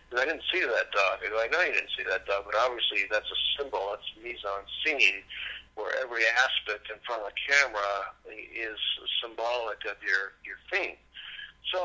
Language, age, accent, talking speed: English, 50-69, American, 185 wpm